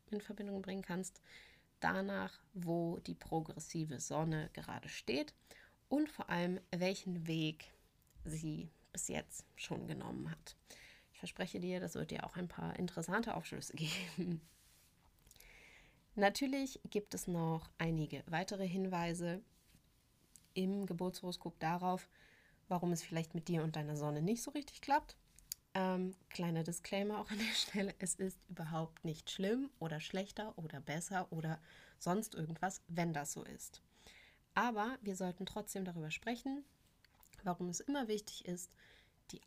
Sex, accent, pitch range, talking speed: female, German, 165-200 Hz, 140 wpm